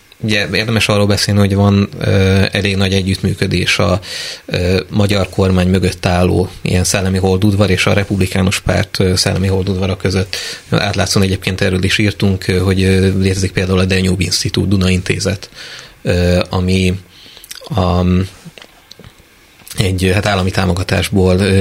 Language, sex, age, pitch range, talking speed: Hungarian, male, 30-49, 95-105 Hz, 140 wpm